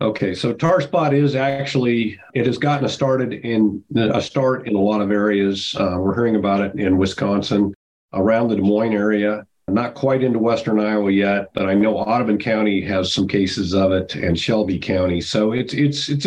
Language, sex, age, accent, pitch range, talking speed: English, male, 40-59, American, 105-140 Hz, 205 wpm